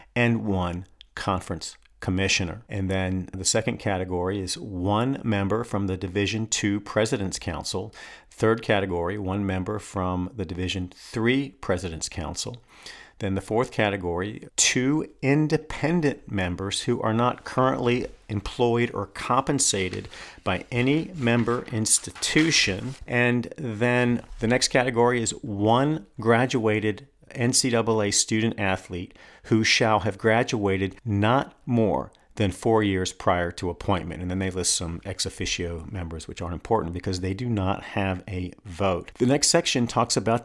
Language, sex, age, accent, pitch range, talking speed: English, male, 40-59, American, 95-120 Hz, 135 wpm